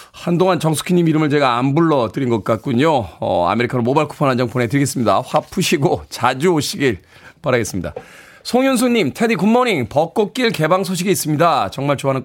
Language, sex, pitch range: Korean, male, 125-185 Hz